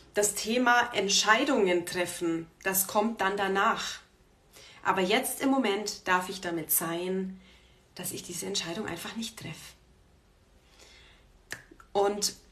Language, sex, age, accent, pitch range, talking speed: German, female, 30-49, German, 180-230 Hz, 115 wpm